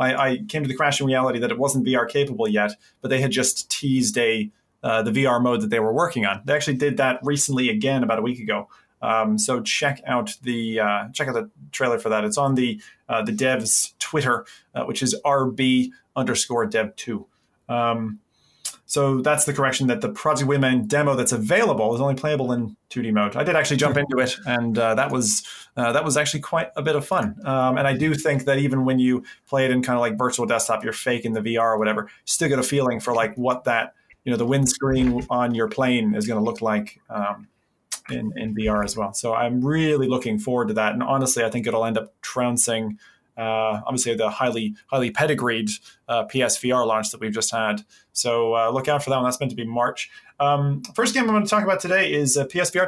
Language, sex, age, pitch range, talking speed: English, male, 30-49, 120-145 Hz, 230 wpm